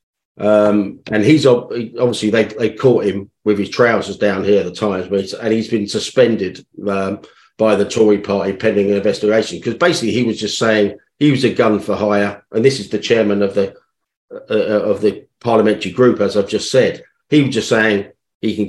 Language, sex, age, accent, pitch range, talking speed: English, male, 50-69, British, 100-115 Hz, 200 wpm